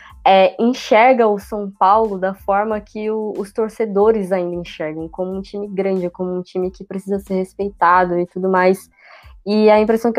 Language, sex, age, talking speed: Portuguese, female, 20-39, 170 wpm